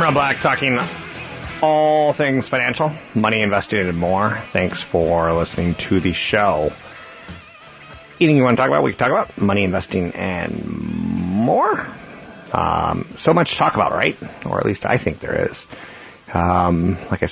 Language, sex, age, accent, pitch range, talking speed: English, male, 30-49, American, 85-115 Hz, 165 wpm